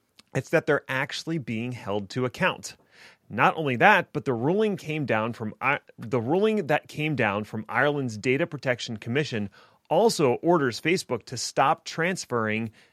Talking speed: 155 wpm